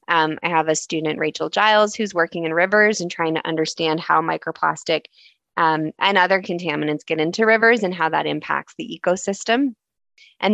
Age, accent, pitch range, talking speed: 20-39, American, 160-185 Hz, 175 wpm